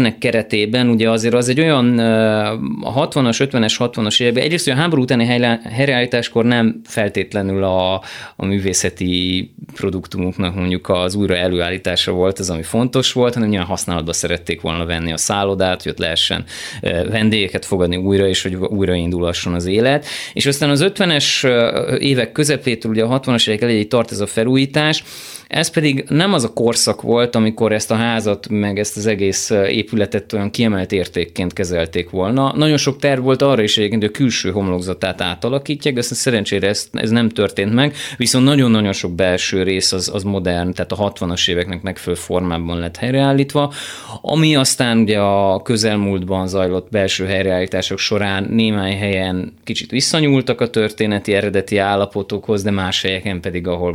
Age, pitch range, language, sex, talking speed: 20-39, 95-120 Hz, Hungarian, male, 160 wpm